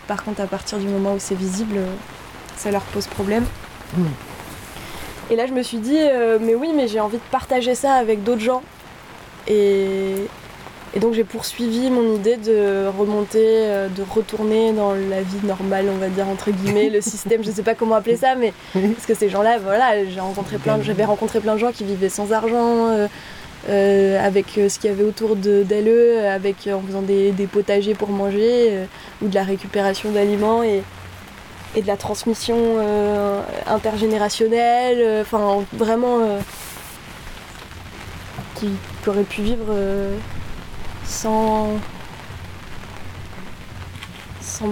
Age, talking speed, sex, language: 20-39, 155 wpm, female, French